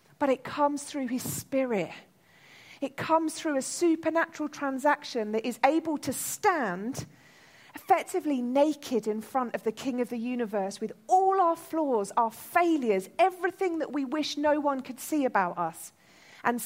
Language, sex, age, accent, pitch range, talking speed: English, female, 40-59, British, 210-305 Hz, 160 wpm